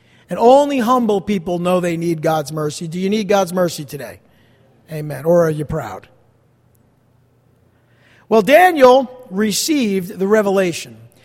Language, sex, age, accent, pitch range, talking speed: English, male, 50-69, American, 150-255 Hz, 135 wpm